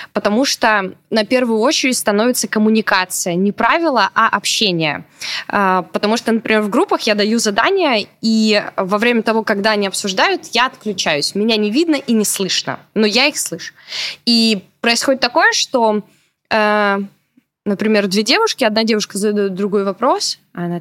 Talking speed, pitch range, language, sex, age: 145 wpm, 205-275 Hz, Russian, female, 20-39